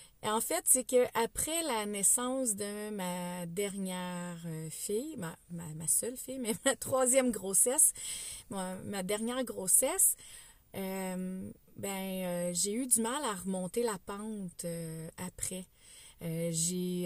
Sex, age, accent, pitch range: female, 30-49, Canadian, 180-235 Hz